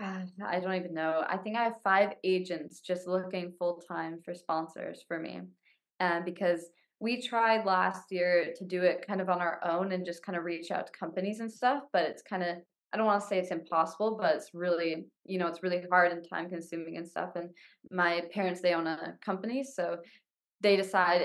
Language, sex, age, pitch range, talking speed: English, female, 20-39, 170-195 Hz, 215 wpm